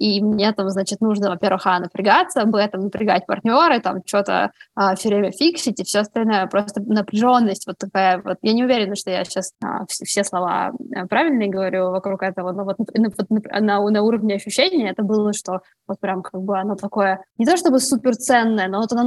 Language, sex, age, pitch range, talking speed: Russian, female, 20-39, 195-225 Hz, 200 wpm